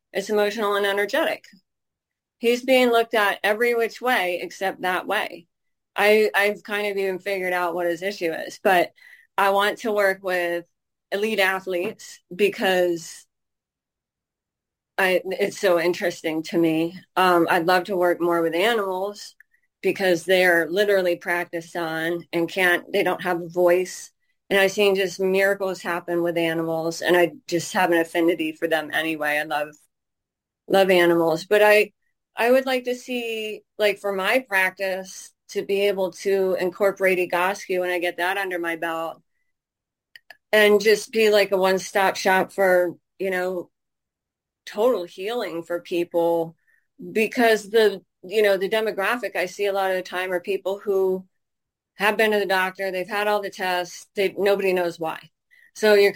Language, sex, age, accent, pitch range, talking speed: English, female, 30-49, American, 175-205 Hz, 160 wpm